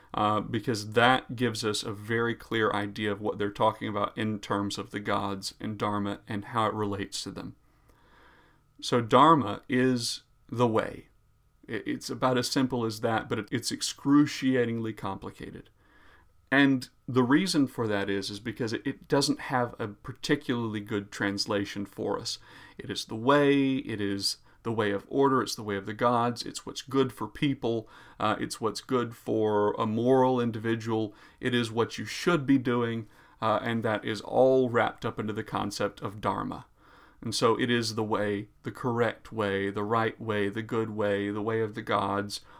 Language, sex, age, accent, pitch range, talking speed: English, male, 40-59, American, 105-125 Hz, 180 wpm